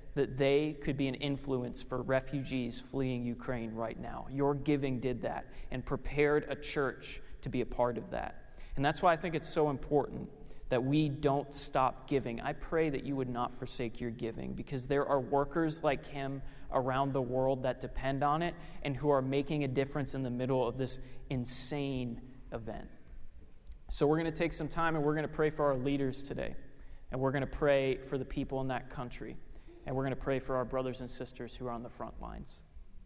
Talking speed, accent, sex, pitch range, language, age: 210 wpm, American, male, 130-150 Hz, English, 20-39